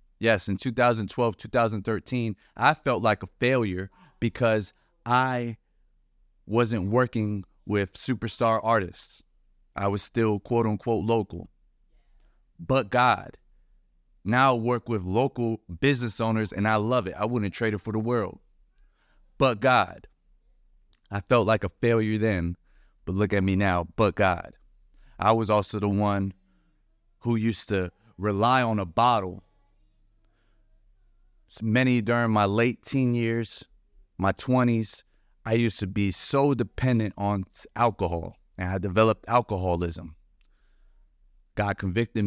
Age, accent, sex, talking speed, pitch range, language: 30-49, American, male, 130 wpm, 95-115 Hz, English